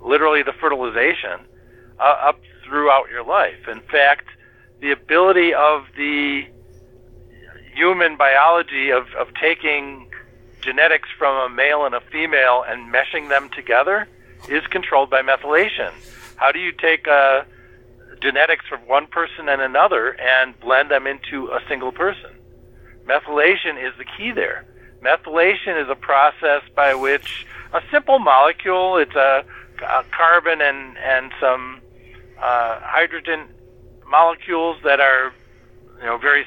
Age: 50-69